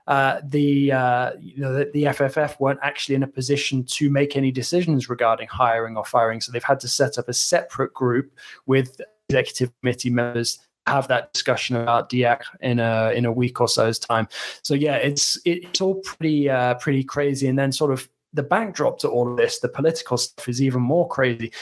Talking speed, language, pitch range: 210 wpm, English, 125-145 Hz